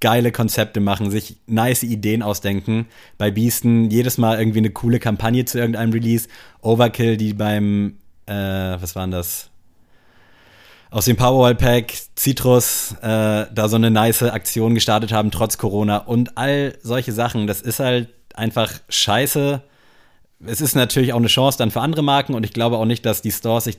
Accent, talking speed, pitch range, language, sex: German, 170 wpm, 105-120 Hz, German, male